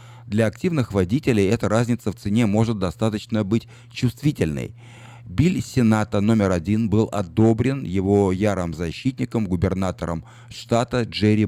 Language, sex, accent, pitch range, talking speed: Russian, male, native, 100-120 Hz, 120 wpm